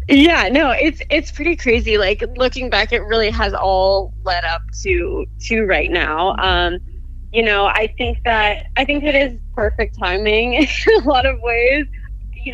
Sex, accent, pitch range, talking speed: female, American, 190-285 Hz, 175 wpm